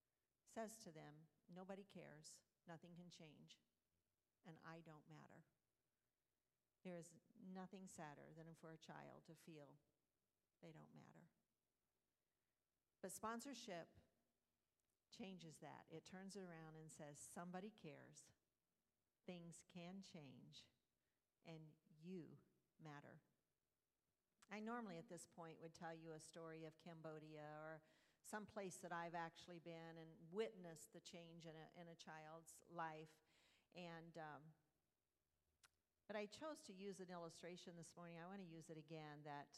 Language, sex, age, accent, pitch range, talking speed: English, female, 50-69, American, 160-190 Hz, 135 wpm